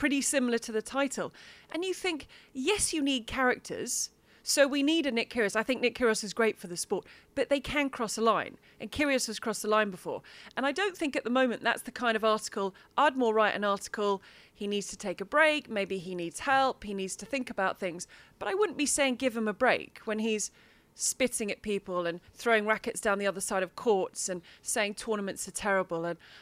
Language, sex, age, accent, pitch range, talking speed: English, female, 30-49, British, 200-260 Hz, 230 wpm